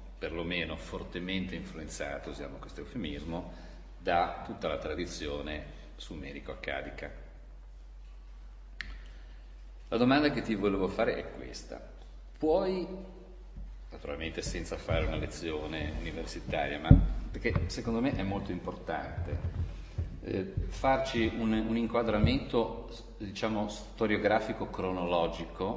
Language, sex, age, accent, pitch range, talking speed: Italian, male, 40-59, native, 80-110 Hz, 95 wpm